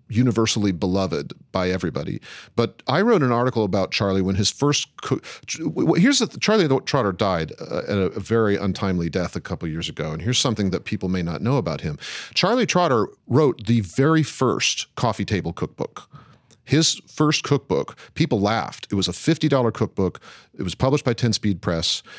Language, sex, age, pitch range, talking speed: English, male, 40-59, 95-120 Hz, 185 wpm